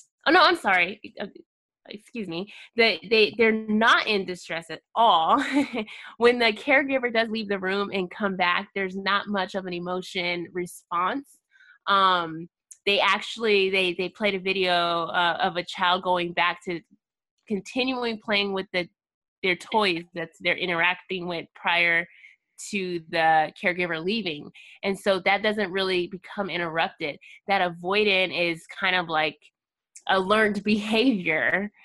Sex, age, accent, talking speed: female, 20-39, American, 145 wpm